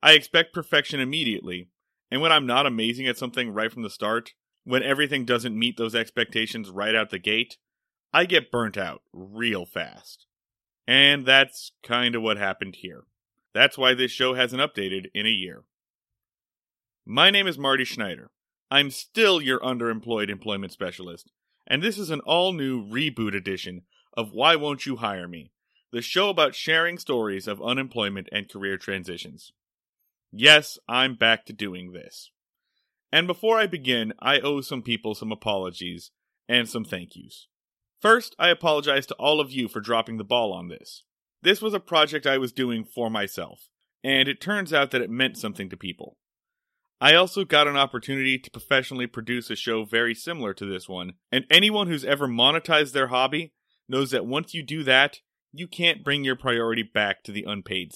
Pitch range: 110-145 Hz